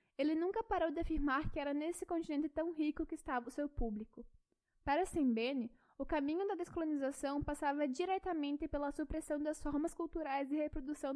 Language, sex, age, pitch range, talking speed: Portuguese, female, 10-29, 260-325 Hz, 165 wpm